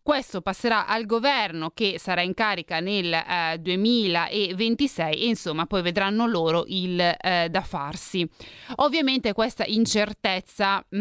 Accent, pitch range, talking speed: native, 175-215 Hz, 125 wpm